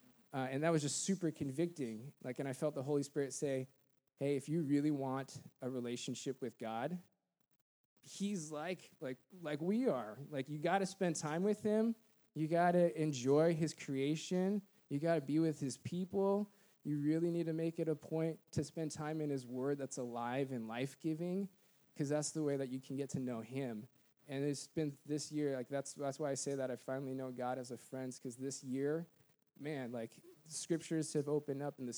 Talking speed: 210 wpm